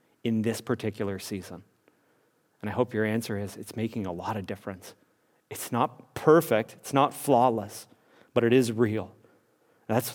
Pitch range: 110-130 Hz